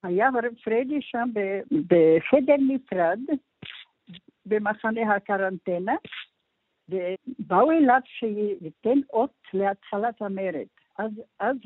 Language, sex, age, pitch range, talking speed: English, female, 60-79, 185-245 Hz, 95 wpm